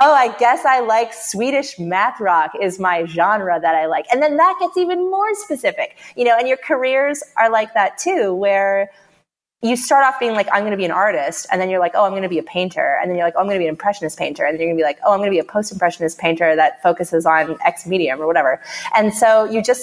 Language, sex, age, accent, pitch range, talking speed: English, female, 30-49, American, 175-235 Hz, 270 wpm